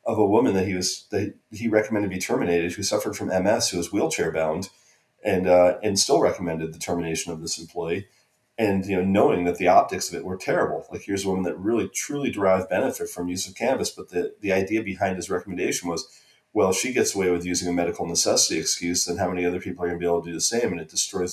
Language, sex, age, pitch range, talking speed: English, male, 30-49, 85-100 Hz, 250 wpm